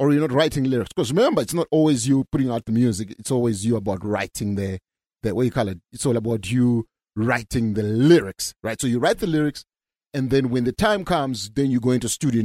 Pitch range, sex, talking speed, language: 125-165 Hz, male, 240 wpm, English